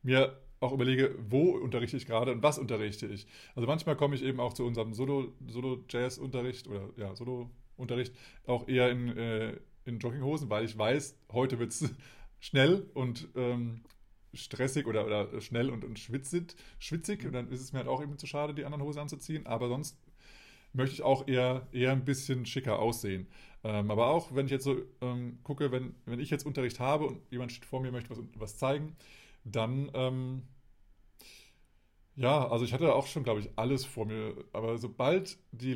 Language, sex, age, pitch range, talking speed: German, male, 20-39, 120-140 Hz, 180 wpm